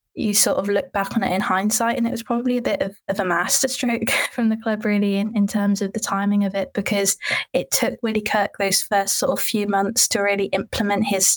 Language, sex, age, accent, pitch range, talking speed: English, female, 20-39, British, 195-220 Hz, 245 wpm